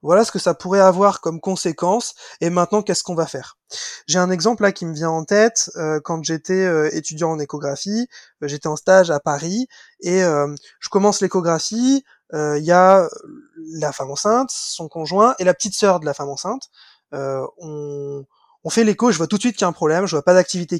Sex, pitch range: male, 160-205 Hz